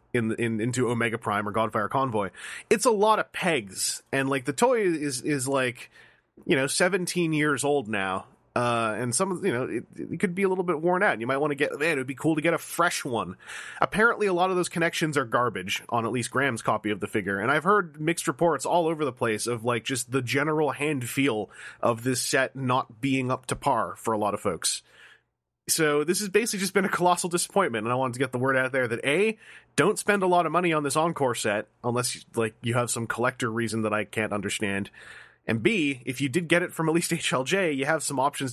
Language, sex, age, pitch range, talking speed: English, male, 30-49, 115-155 Hz, 245 wpm